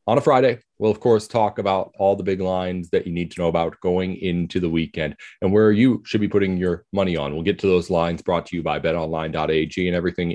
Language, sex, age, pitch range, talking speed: English, male, 30-49, 90-125 Hz, 250 wpm